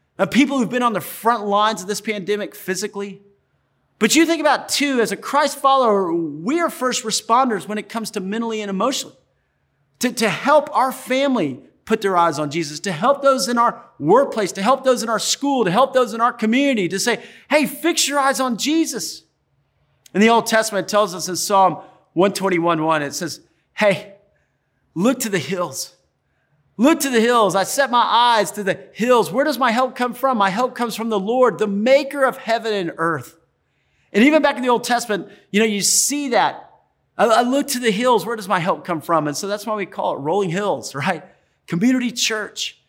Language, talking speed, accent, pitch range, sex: English, 210 wpm, American, 190-250 Hz, male